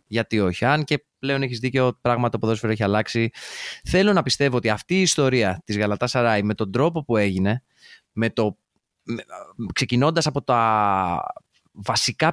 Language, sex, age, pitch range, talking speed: Greek, male, 20-39, 110-140 Hz, 160 wpm